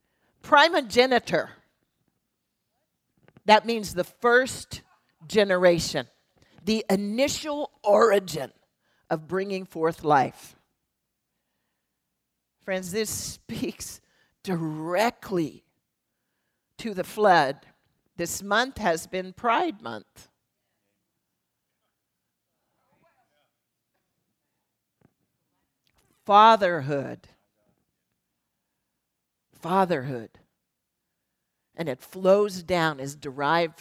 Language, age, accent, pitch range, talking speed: English, 50-69, American, 155-210 Hz, 60 wpm